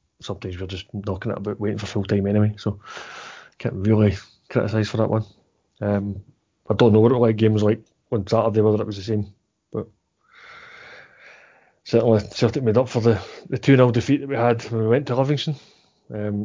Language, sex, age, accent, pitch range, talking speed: English, male, 30-49, British, 110-125 Hz, 195 wpm